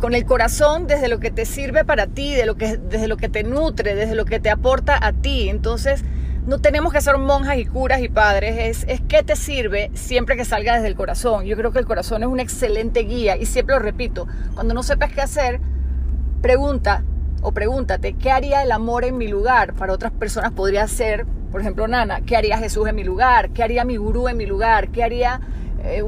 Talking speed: 220 wpm